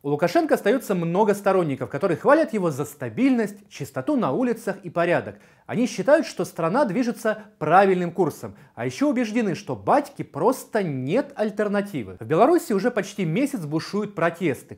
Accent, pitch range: native, 155-230 Hz